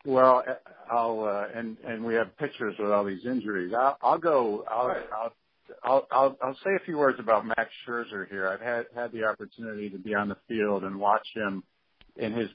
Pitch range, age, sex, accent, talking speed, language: 110-130 Hz, 50-69, male, American, 200 wpm, English